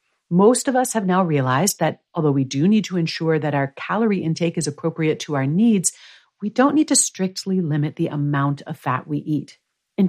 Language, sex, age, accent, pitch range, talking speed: English, female, 50-69, American, 155-220 Hz, 210 wpm